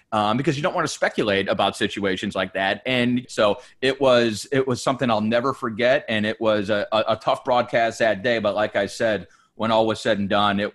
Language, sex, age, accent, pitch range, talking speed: English, male, 30-49, American, 100-125 Hz, 230 wpm